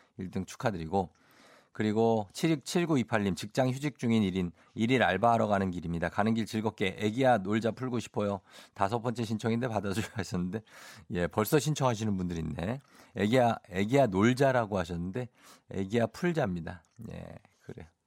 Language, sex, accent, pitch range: Korean, male, native, 95-130 Hz